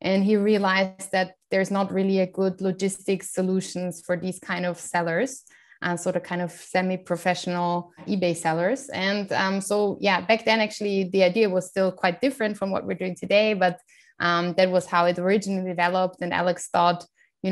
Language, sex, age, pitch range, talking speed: English, female, 20-39, 175-195 Hz, 185 wpm